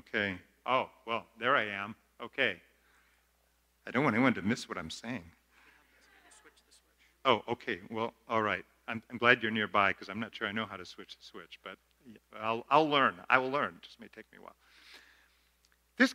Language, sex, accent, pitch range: English, male, American, 105-160 Hz